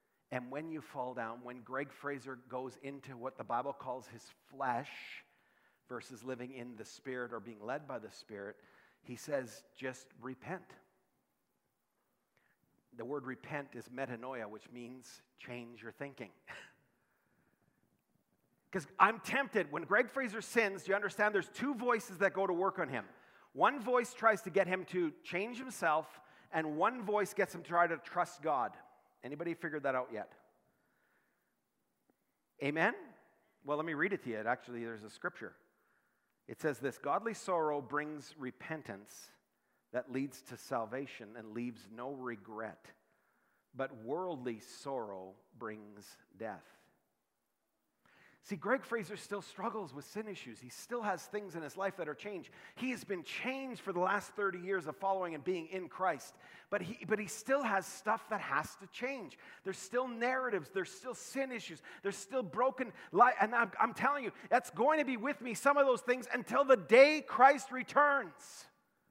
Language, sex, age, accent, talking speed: English, male, 40-59, American, 165 wpm